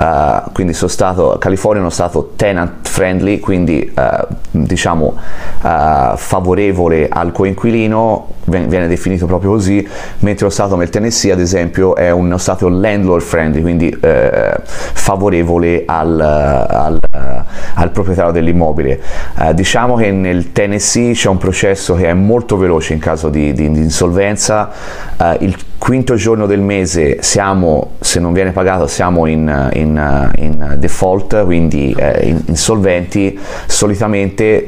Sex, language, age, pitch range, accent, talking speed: male, Italian, 30-49, 80-100 Hz, native, 125 wpm